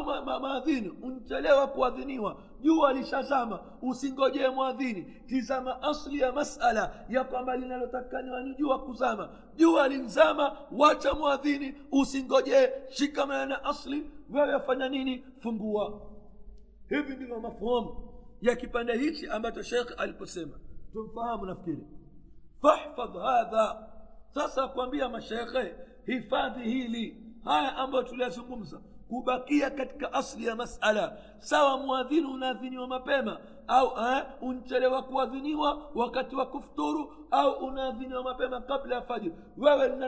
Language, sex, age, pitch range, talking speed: Swahili, male, 50-69, 220-270 Hz, 105 wpm